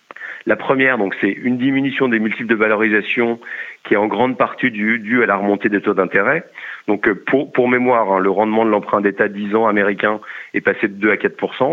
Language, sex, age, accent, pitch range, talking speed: French, male, 40-59, French, 100-120 Hz, 210 wpm